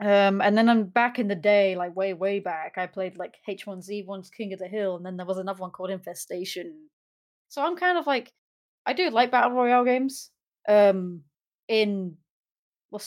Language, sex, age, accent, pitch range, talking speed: English, female, 30-49, British, 190-225 Hz, 195 wpm